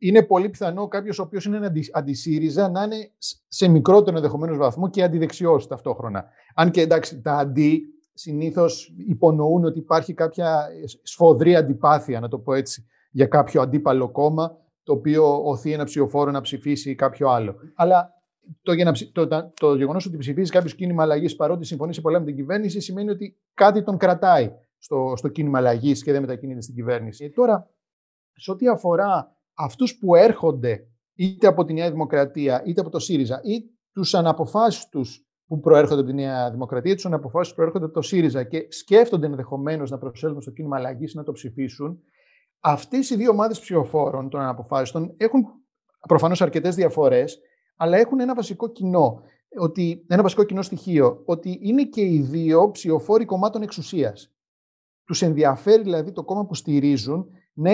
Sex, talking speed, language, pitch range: male, 165 wpm, Greek, 145-195 Hz